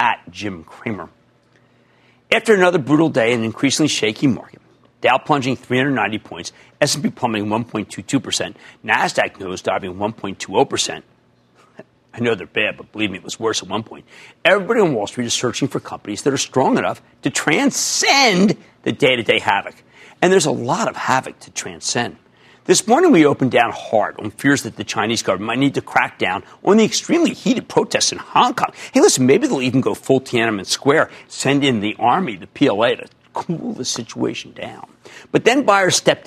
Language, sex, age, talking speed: English, male, 40-59, 180 wpm